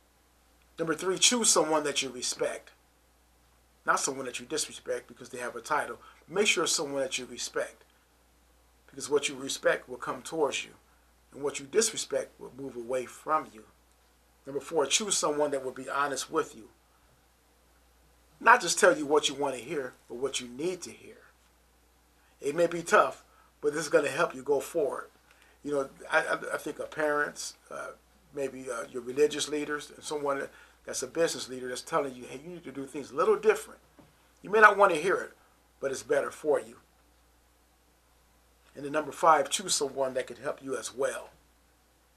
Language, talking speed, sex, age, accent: English, 190 wpm, male, 40-59, American